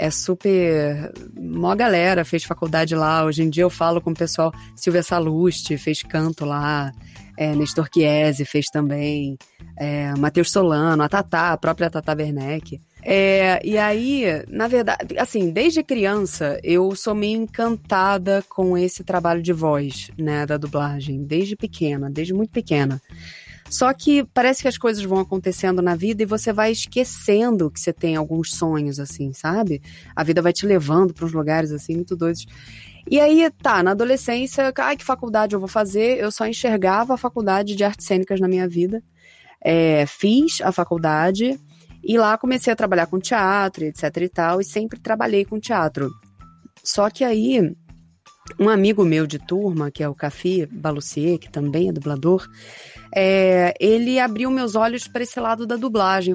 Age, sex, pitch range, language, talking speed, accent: 20-39, female, 155-220 Hz, Portuguese, 165 wpm, Brazilian